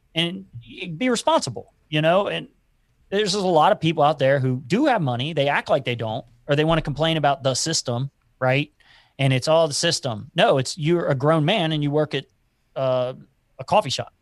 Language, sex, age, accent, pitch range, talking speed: English, male, 30-49, American, 130-170 Hz, 215 wpm